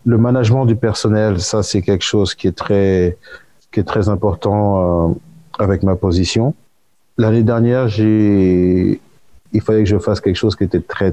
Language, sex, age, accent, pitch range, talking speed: French, male, 30-49, French, 90-105 Hz, 175 wpm